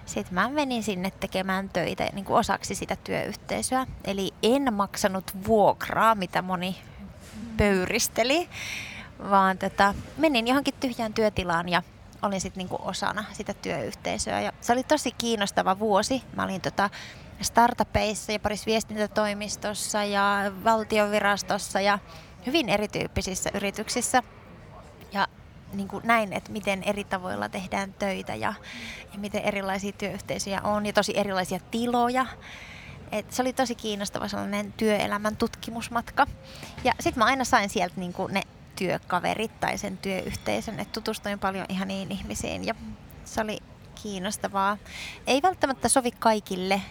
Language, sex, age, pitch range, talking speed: Finnish, female, 20-39, 195-225 Hz, 130 wpm